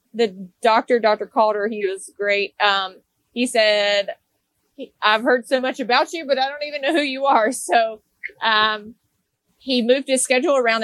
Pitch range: 200-240 Hz